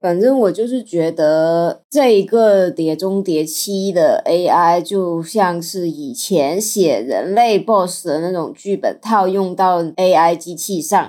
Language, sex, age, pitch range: Chinese, female, 20-39, 185-225 Hz